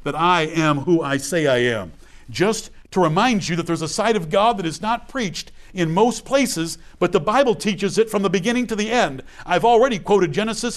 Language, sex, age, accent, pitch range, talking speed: English, male, 50-69, American, 170-230 Hz, 225 wpm